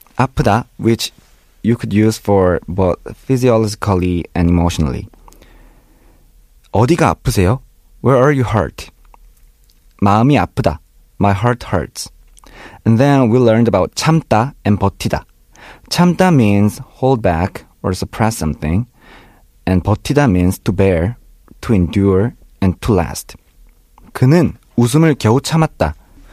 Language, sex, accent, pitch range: Korean, male, native, 95-135 Hz